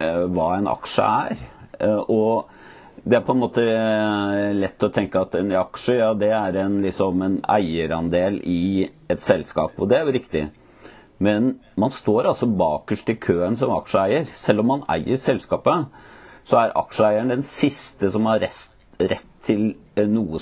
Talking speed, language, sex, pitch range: 160 wpm, English, male, 90-115 Hz